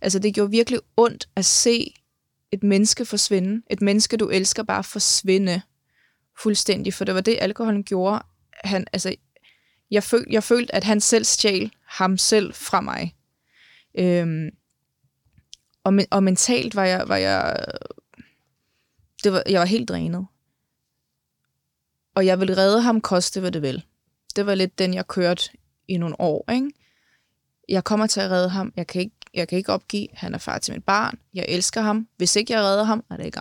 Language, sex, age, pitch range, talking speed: Danish, female, 20-39, 185-215 Hz, 180 wpm